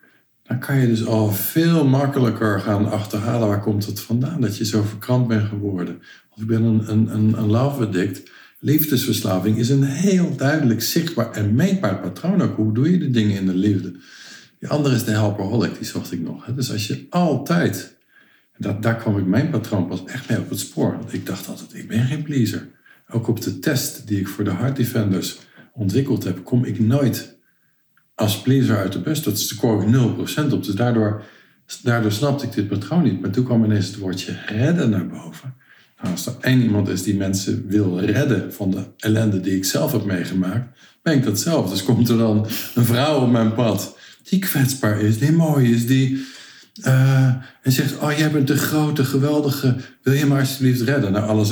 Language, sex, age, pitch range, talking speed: Dutch, male, 50-69, 105-135 Hz, 205 wpm